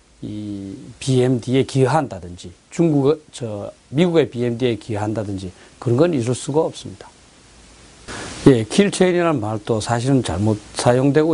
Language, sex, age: Korean, male, 40-59